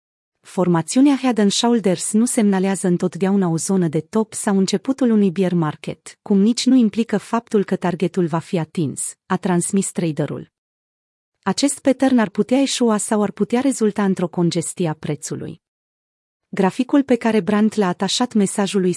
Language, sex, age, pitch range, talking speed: Romanian, female, 30-49, 180-220 Hz, 155 wpm